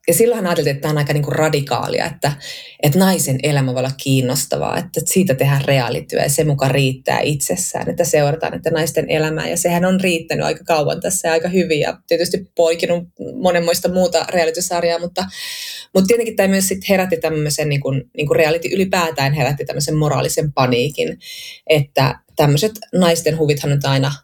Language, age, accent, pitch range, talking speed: Finnish, 20-39, native, 145-175 Hz, 170 wpm